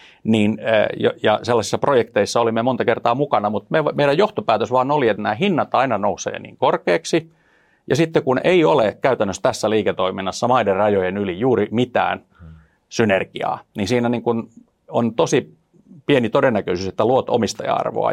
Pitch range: 105-130 Hz